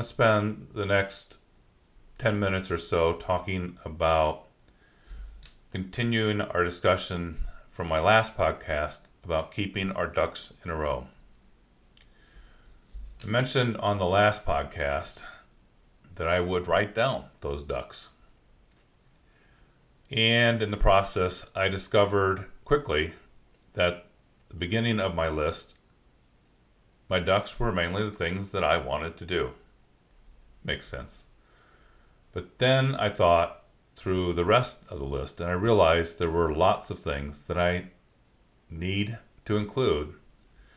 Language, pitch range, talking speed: English, 85-105 Hz, 125 wpm